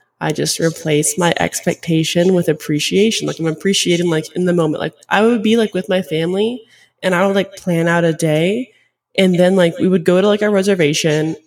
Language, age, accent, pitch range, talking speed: English, 20-39, American, 160-185 Hz, 210 wpm